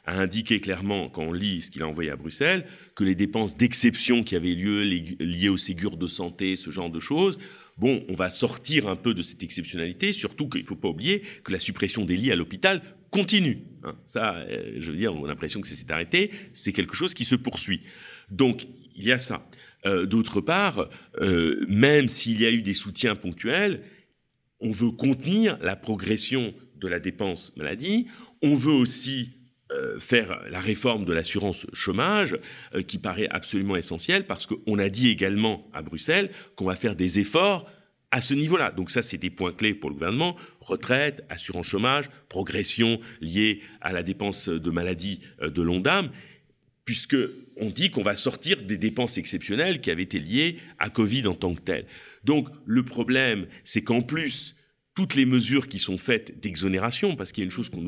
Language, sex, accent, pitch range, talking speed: French, male, French, 95-140 Hz, 190 wpm